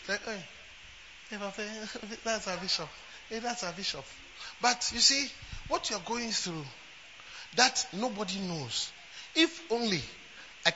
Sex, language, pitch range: male, English, 180-250 Hz